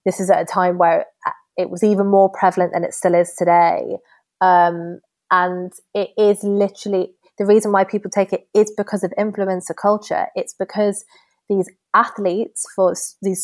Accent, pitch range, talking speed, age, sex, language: British, 180-210 Hz, 170 wpm, 20-39, female, English